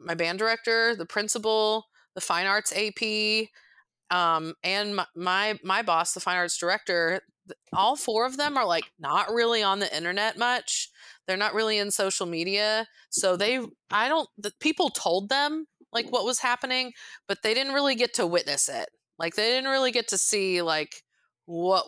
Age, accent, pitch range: 30-49, American, 175-230 Hz